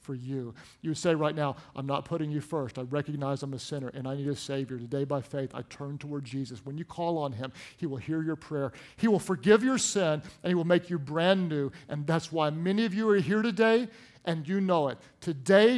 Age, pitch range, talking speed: 50-69, 145-180 Hz, 245 wpm